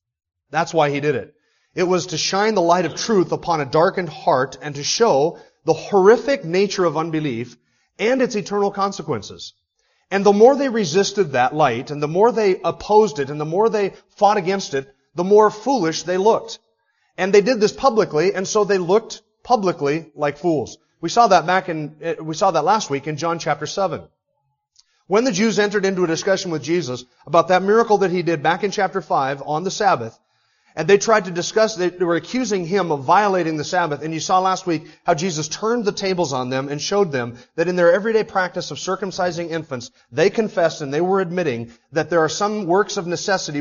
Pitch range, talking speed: 150-200 Hz, 210 wpm